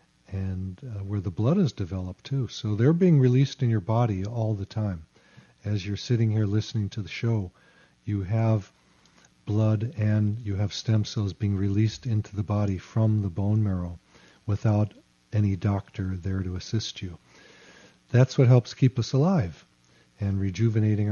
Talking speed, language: 165 wpm, English